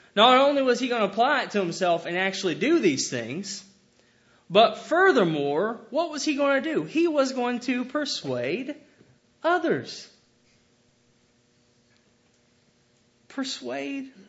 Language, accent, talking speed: English, American, 125 wpm